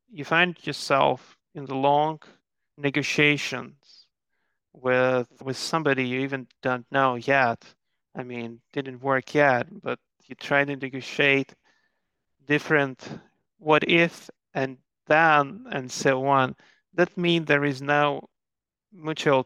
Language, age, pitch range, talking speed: English, 30-49, 135-175 Hz, 120 wpm